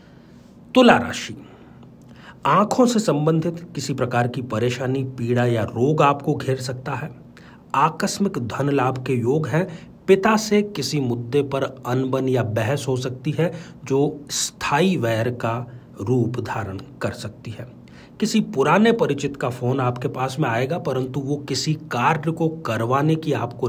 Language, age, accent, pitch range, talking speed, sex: Hindi, 40-59, native, 120-155 Hz, 150 wpm, male